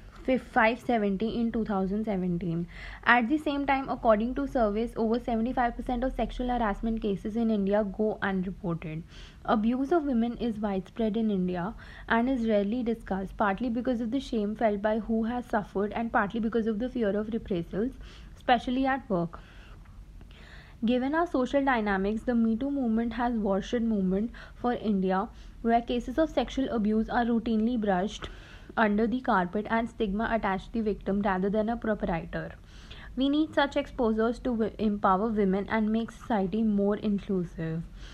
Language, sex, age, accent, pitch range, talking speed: English, female, 20-39, Indian, 205-240 Hz, 155 wpm